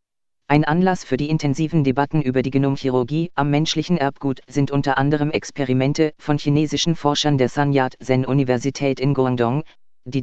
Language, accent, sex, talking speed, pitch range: German, German, female, 155 wpm, 130-150 Hz